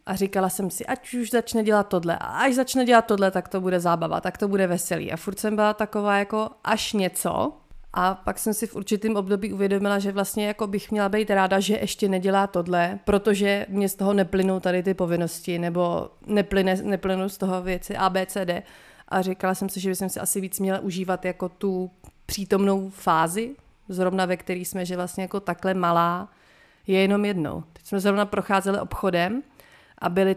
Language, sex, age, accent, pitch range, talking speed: Czech, female, 30-49, native, 180-205 Hz, 195 wpm